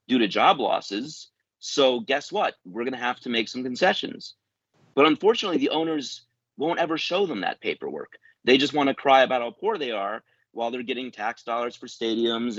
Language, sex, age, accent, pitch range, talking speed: English, male, 30-49, American, 115-145 Hz, 200 wpm